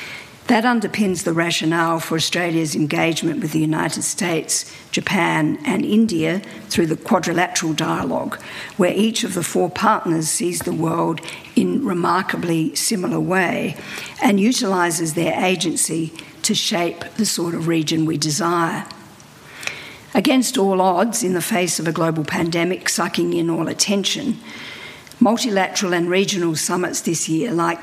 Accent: Australian